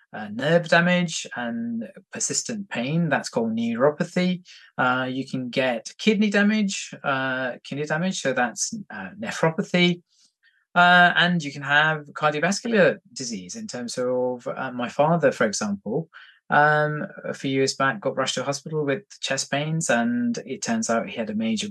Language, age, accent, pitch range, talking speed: English, 20-39, British, 140-205 Hz, 160 wpm